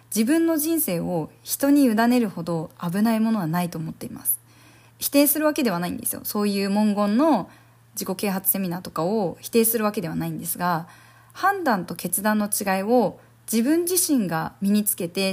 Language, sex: Japanese, female